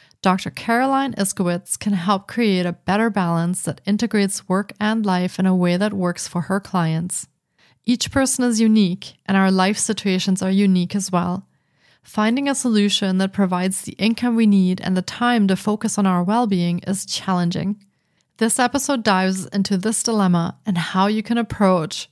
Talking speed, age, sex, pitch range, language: 175 wpm, 30-49, female, 185-220 Hz, English